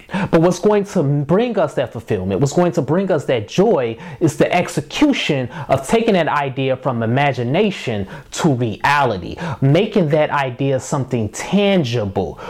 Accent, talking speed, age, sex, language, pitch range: American, 150 wpm, 20-39, male, English, 130-180 Hz